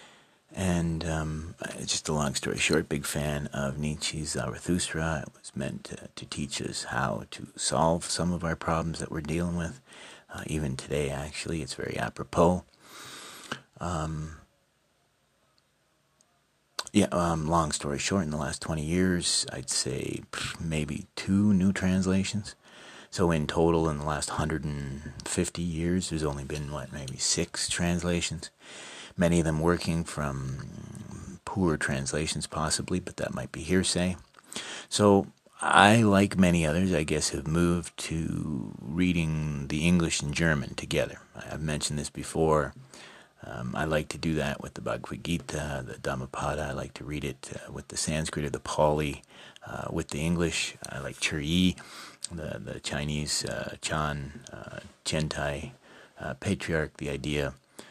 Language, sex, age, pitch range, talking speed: English, male, 40-59, 75-85 Hz, 150 wpm